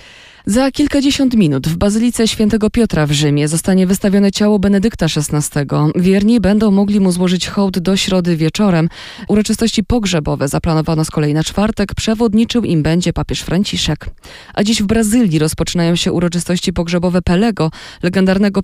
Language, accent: Polish, native